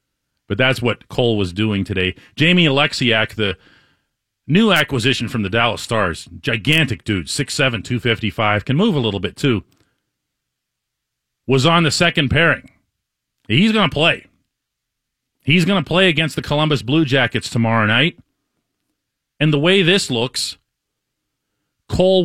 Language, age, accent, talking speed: English, 40-59, American, 140 wpm